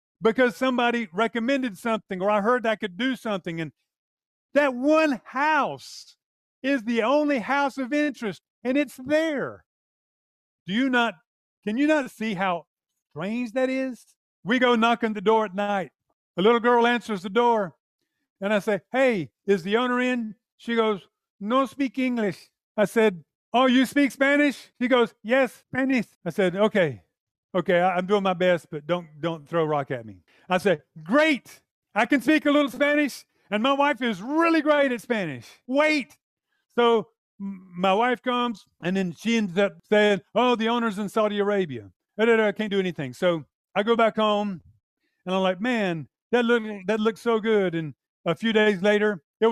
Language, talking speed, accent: English, 175 wpm, American